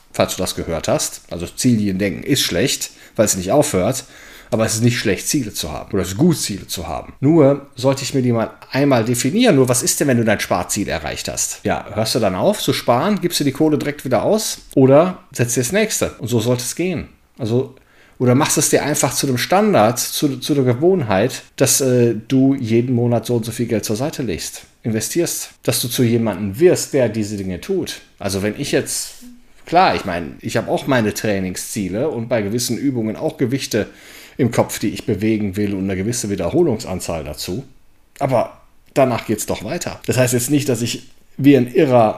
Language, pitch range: German, 110-145 Hz